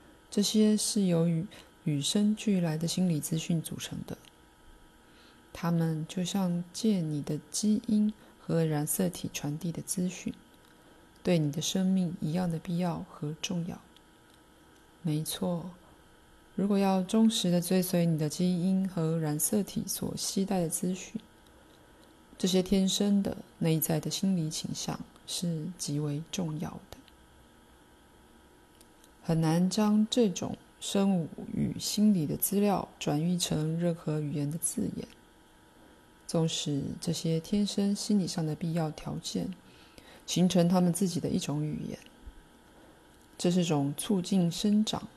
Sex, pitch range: female, 155-200 Hz